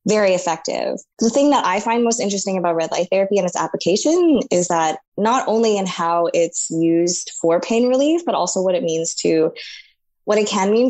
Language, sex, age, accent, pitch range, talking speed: English, female, 20-39, American, 170-210 Hz, 205 wpm